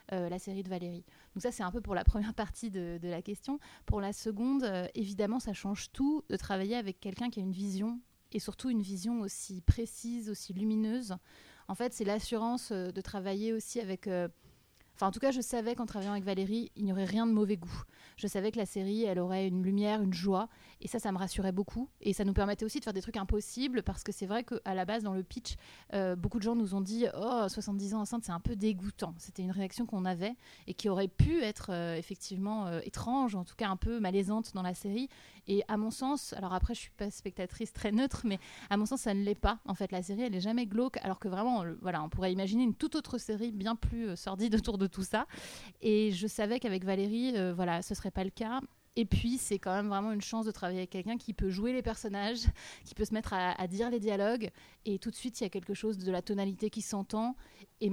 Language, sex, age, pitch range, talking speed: French, female, 30-49, 190-230 Hz, 255 wpm